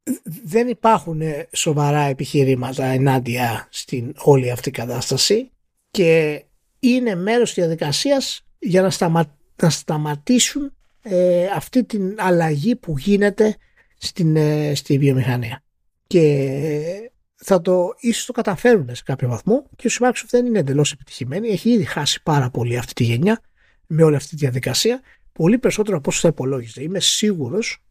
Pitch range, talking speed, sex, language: 140-200 Hz, 130 wpm, male, Greek